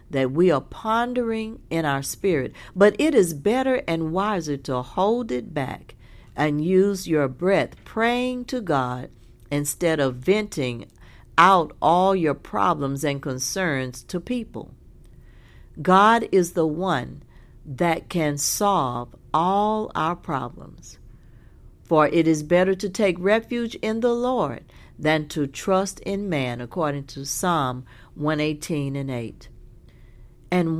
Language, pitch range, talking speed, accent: English, 140-210 Hz, 130 wpm, American